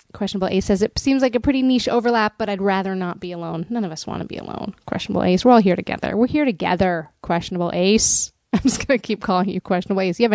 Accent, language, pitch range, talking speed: American, English, 190-260 Hz, 260 wpm